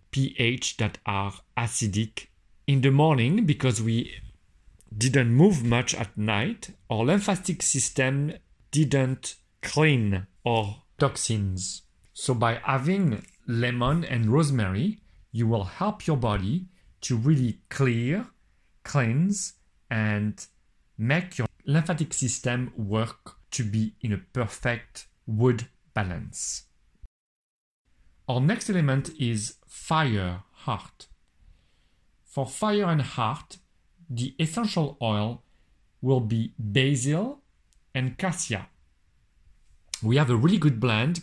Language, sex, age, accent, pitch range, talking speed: English, male, 40-59, French, 110-150 Hz, 105 wpm